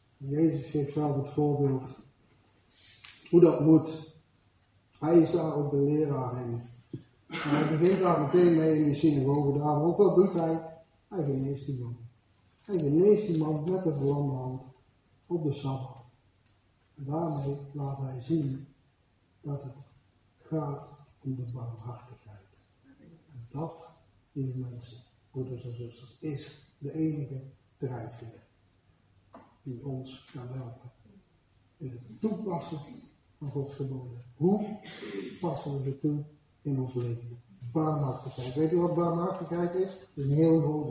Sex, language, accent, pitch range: male, Dutch, Dutch, 120-150 Hz